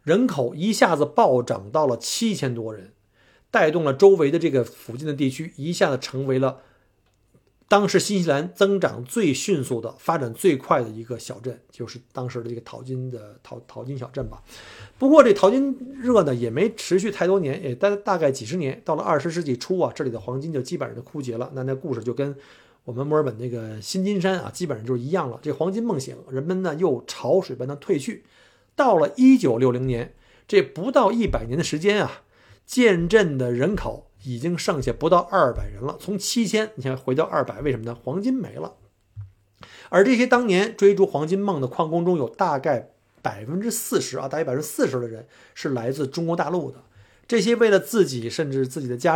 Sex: male